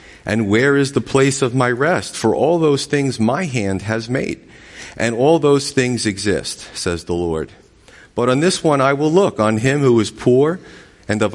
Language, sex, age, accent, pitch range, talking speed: English, male, 40-59, American, 95-130 Hz, 200 wpm